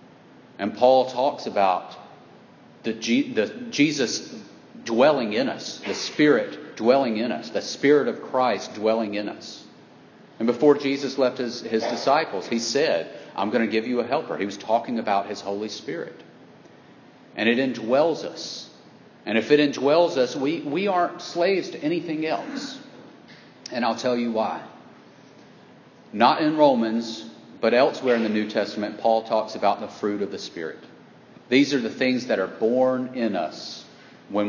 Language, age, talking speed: English, 40-59, 165 wpm